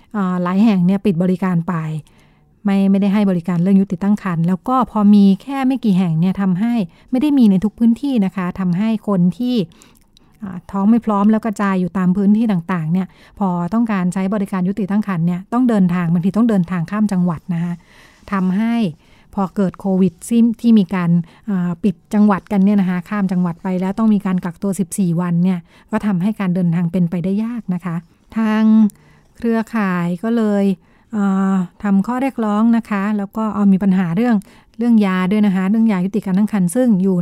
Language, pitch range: Thai, 180-210 Hz